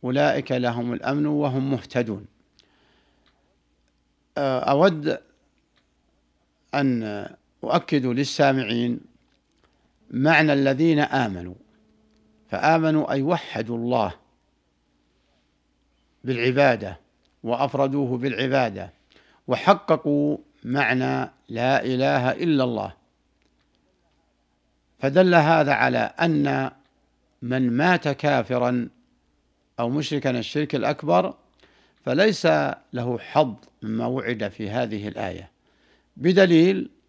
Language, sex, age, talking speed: Arabic, male, 60-79, 75 wpm